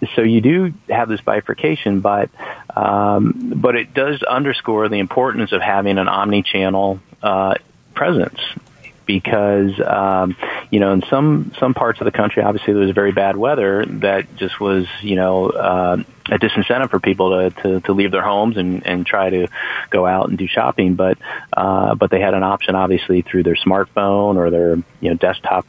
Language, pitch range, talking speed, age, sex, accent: English, 90-100 Hz, 185 wpm, 30-49, male, American